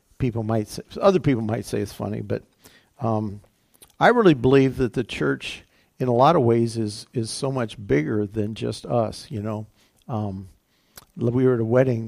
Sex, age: male, 50-69